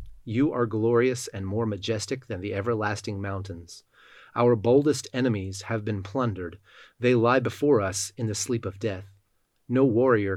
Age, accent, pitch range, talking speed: 30-49, American, 100-130 Hz, 155 wpm